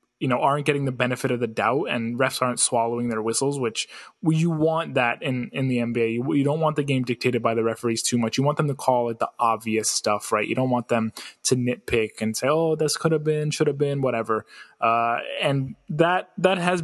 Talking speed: 240 wpm